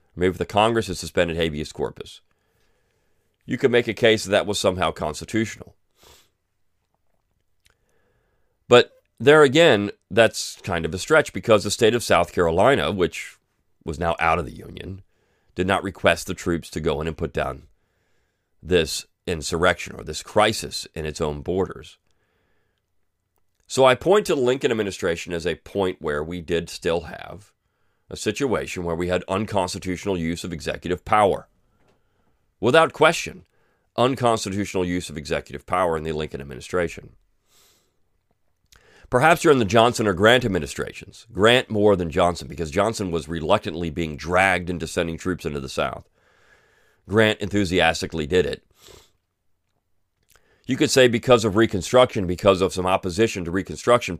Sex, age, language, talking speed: male, 40-59, English, 150 wpm